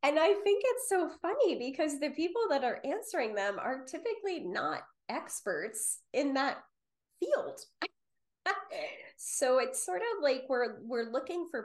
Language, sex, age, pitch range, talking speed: English, female, 20-39, 190-260 Hz, 150 wpm